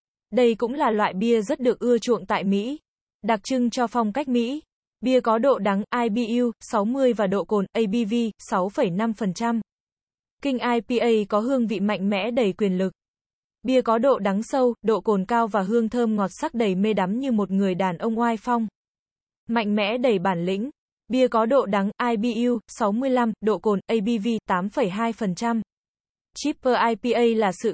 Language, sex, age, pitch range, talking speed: Vietnamese, female, 20-39, 210-240 Hz, 175 wpm